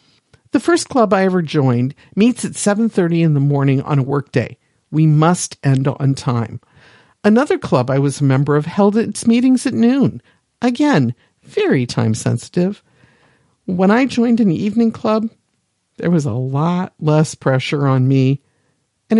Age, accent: 50-69, American